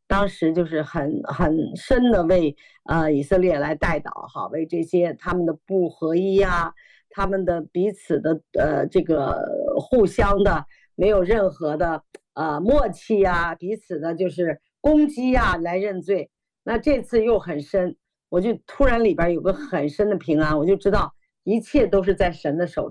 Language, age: Chinese, 50-69